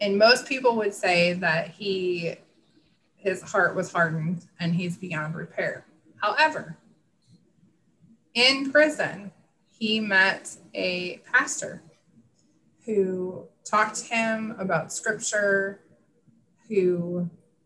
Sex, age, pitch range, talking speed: female, 30-49, 175-215 Hz, 100 wpm